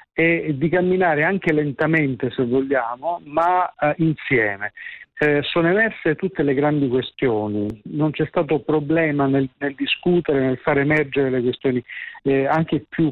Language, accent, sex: Italian, native, male